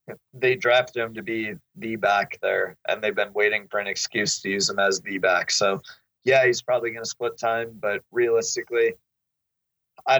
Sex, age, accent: male, 30-49, American